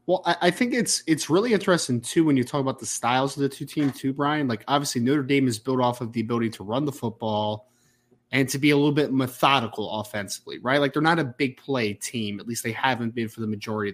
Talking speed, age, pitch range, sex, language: 250 wpm, 20-39, 120-155 Hz, male, English